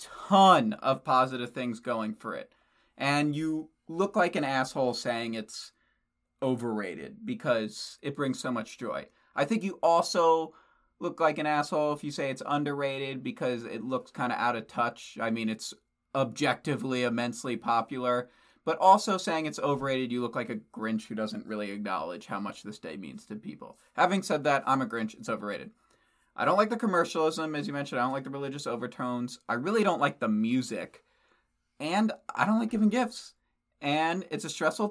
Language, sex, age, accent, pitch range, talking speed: English, male, 30-49, American, 125-205 Hz, 185 wpm